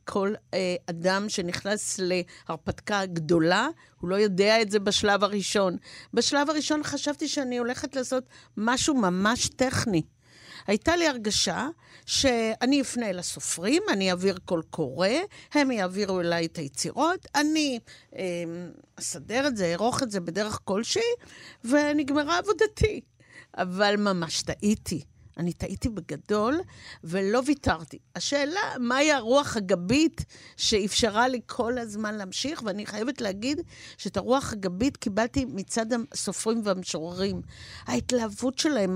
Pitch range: 195-265 Hz